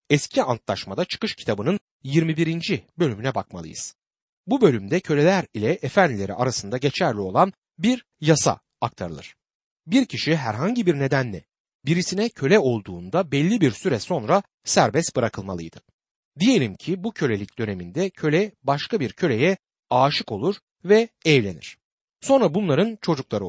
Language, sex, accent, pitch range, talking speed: Turkish, male, native, 115-185 Hz, 125 wpm